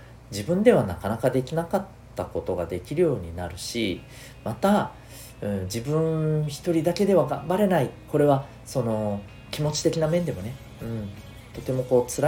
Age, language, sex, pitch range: 40-59, Japanese, male, 100-140 Hz